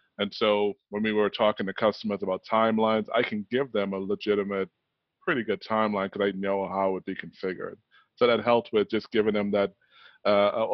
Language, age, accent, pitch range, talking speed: English, 20-39, American, 100-115 Hz, 200 wpm